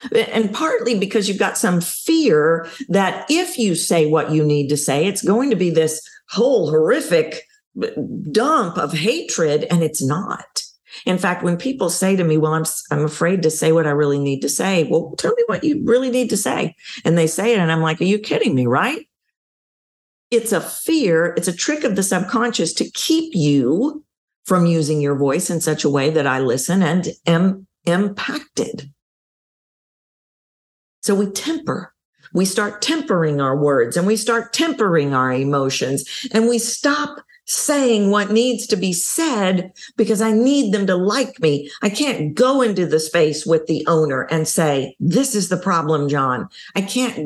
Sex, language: female, English